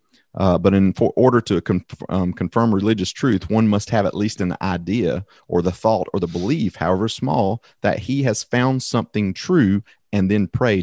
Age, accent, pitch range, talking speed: 30-49, American, 90-110 Hz, 185 wpm